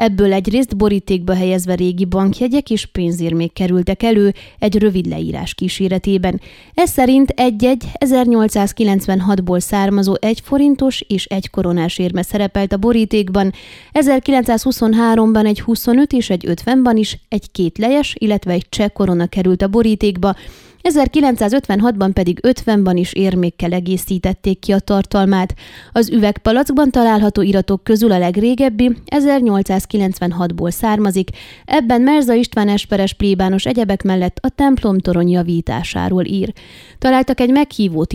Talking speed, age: 120 wpm, 20-39